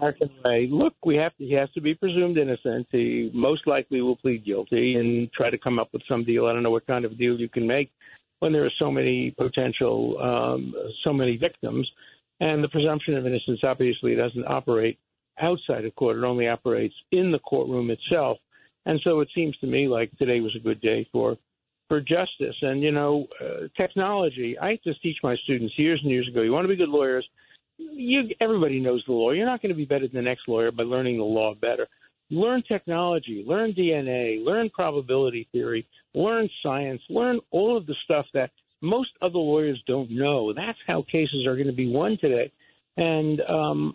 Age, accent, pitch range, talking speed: 60-79, American, 125-170 Hz, 205 wpm